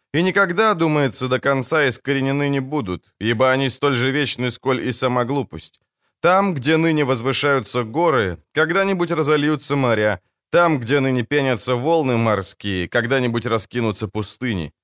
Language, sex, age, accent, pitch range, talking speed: Ukrainian, male, 20-39, native, 110-150 Hz, 140 wpm